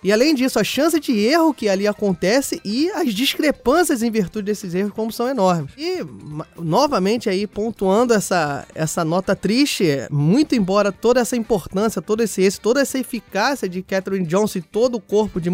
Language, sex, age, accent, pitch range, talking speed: Portuguese, male, 20-39, Brazilian, 190-230 Hz, 180 wpm